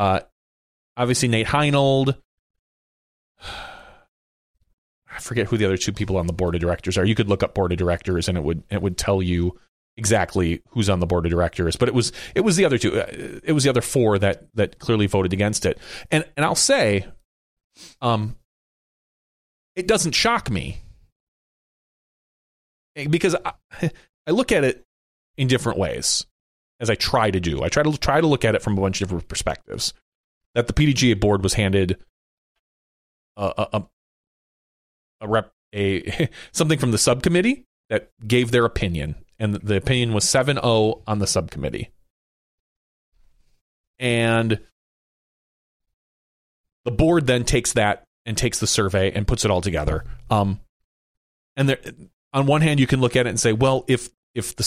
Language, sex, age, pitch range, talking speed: English, male, 30-49, 90-125 Hz, 165 wpm